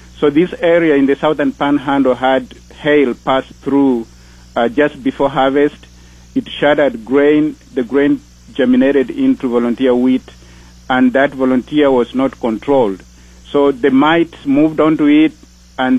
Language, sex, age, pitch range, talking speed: English, male, 50-69, 120-150 Hz, 145 wpm